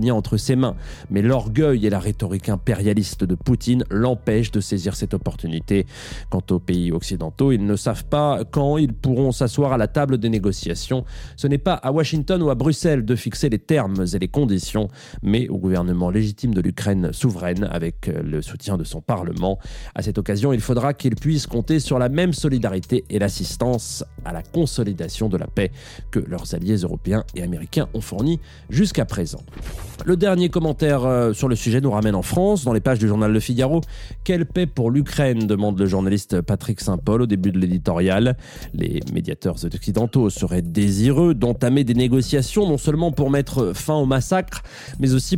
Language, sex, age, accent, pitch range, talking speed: French, male, 30-49, French, 100-140 Hz, 180 wpm